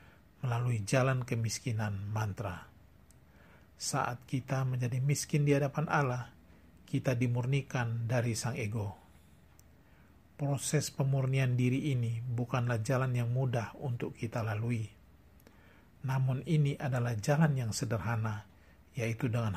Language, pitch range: Indonesian, 95-135 Hz